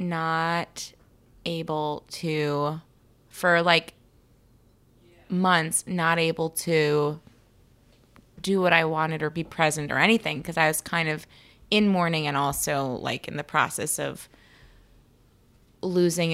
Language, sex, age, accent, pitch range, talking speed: English, female, 20-39, American, 140-170 Hz, 120 wpm